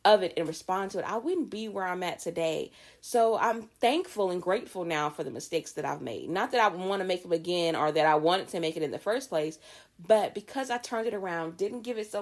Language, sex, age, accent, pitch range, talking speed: English, female, 30-49, American, 170-220 Hz, 265 wpm